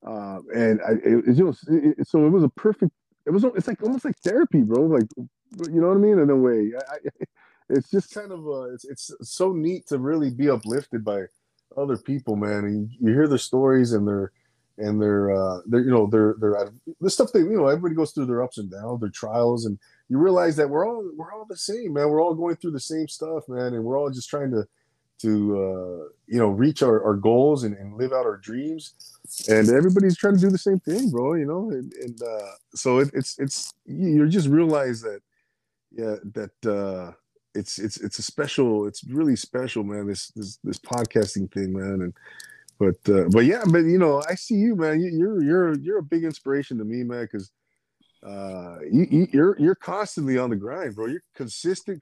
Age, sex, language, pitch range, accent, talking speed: 20-39, male, English, 110-165 Hz, American, 220 wpm